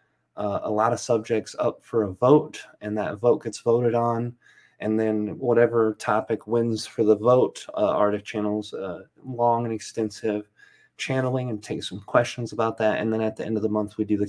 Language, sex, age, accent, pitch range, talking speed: English, male, 30-49, American, 105-120 Hz, 200 wpm